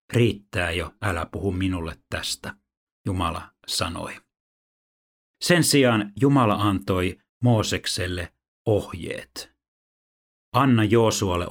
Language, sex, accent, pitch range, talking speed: Finnish, male, native, 85-105 Hz, 85 wpm